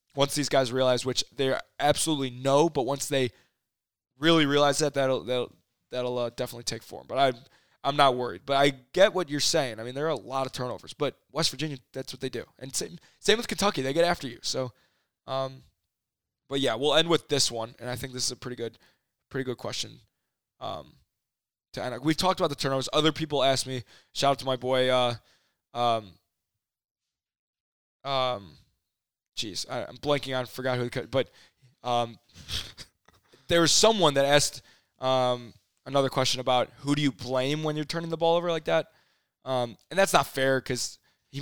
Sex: male